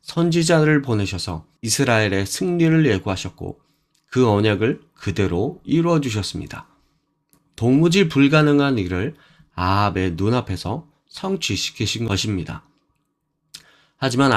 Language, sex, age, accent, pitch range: Korean, male, 30-49, native, 100-155 Hz